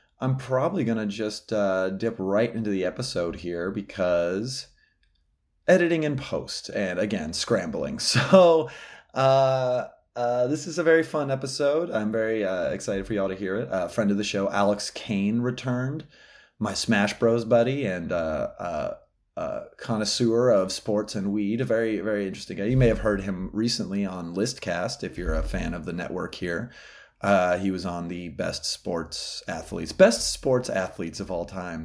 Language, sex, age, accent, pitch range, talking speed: English, male, 30-49, American, 95-120 Hz, 175 wpm